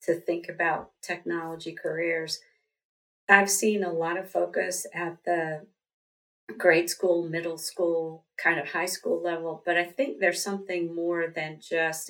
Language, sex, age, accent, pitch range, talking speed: English, female, 40-59, American, 160-180 Hz, 150 wpm